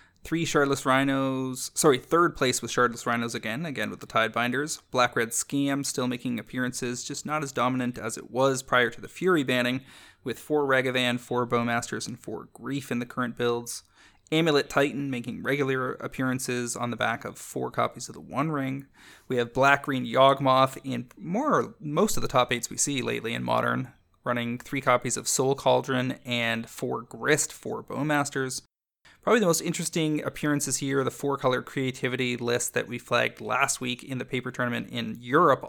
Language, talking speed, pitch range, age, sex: English, 185 wpm, 120-135 Hz, 20-39, male